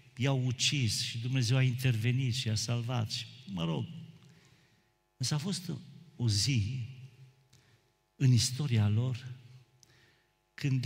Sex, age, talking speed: male, 50-69, 115 wpm